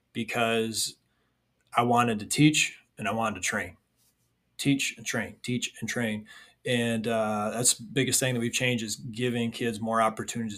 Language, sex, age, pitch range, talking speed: English, male, 20-39, 110-125 Hz, 170 wpm